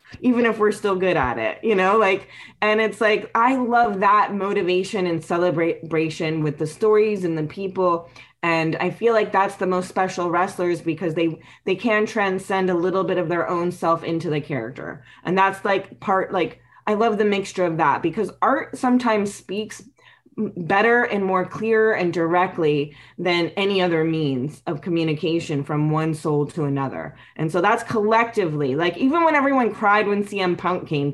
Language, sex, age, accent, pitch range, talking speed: English, female, 20-39, American, 170-220 Hz, 180 wpm